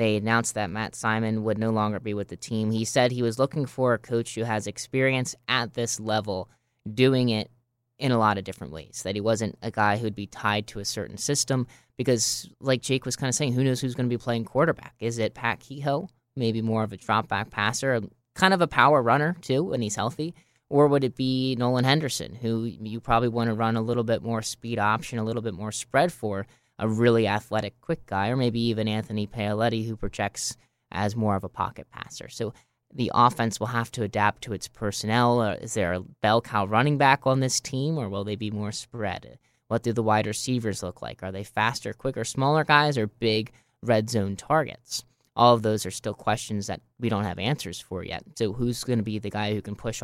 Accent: American